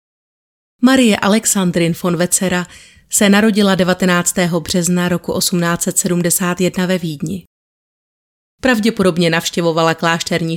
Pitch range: 170-195 Hz